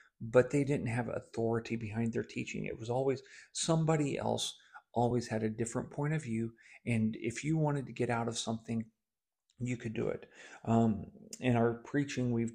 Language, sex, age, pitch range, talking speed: English, male, 40-59, 115-140 Hz, 180 wpm